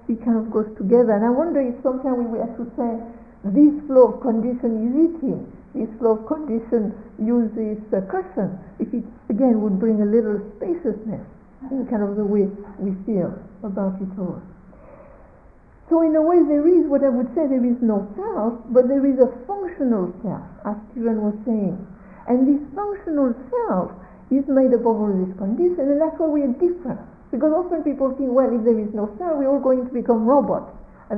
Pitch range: 215-280 Hz